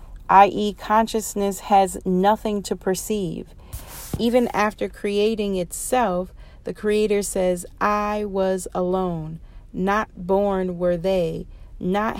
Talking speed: 105 wpm